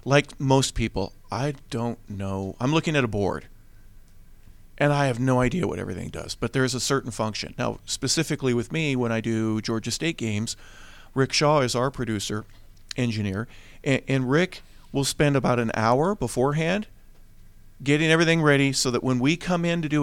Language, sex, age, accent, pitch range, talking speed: English, male, 40-59, American, 115-150 Hz, 180 wpm